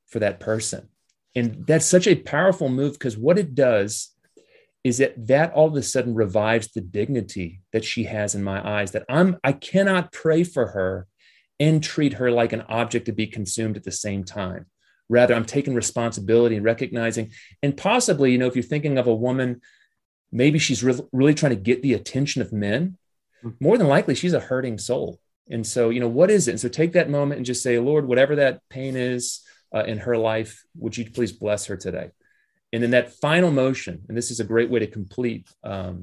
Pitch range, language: 105-145 Hz, English